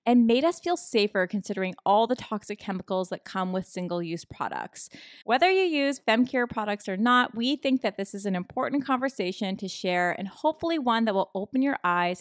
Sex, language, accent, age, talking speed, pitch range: female, English, American, 20-39, 195 wpm, 185-250 Hz